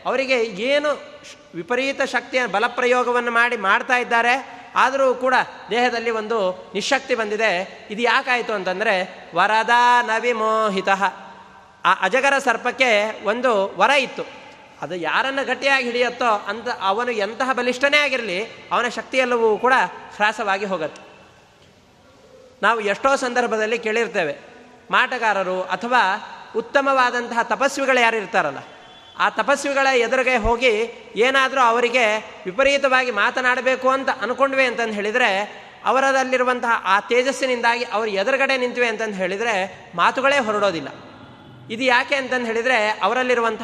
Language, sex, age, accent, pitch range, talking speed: Kannada, male, 30-49, native, 220-260 Hz, 105 wpm